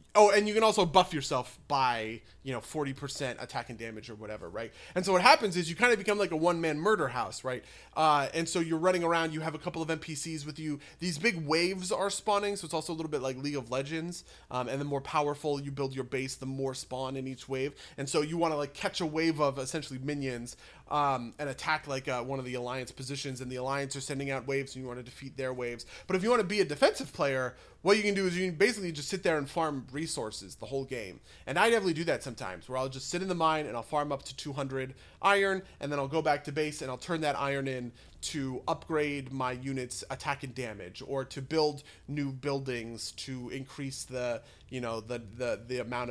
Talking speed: 250 wpm